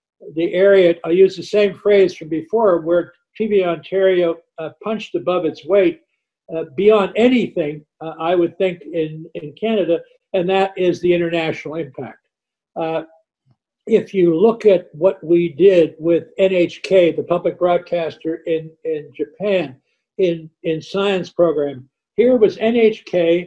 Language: English